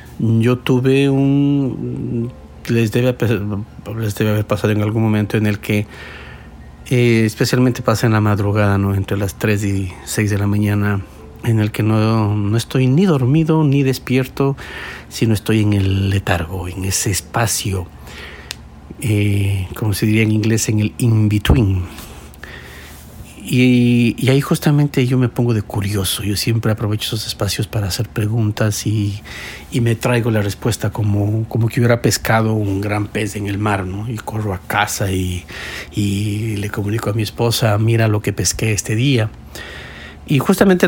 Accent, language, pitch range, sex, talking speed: Mexican, Spanish, 100-120 Hz, male, 160 wpm